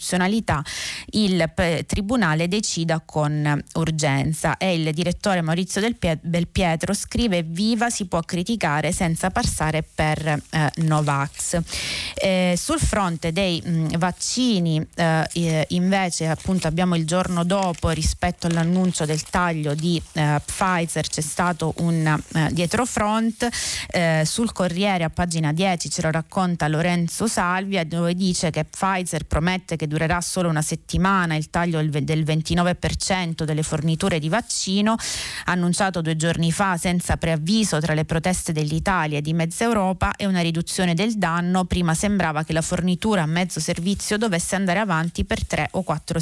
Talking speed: 145 wpm